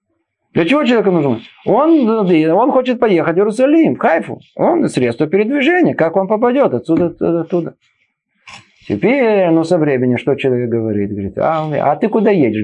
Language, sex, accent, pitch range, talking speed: Russian, male, native, 155-225 Hz, 160 wpm